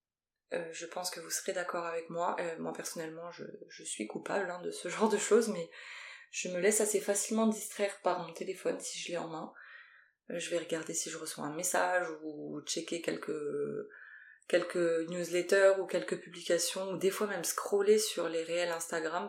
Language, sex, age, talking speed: French, female, 20-39, 200 wpm